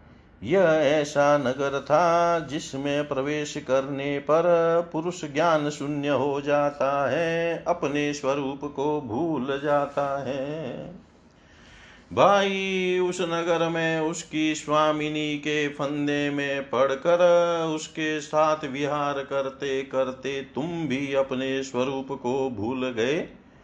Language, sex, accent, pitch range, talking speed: Hindi, male, native, 135-170 Hz, 105 wpm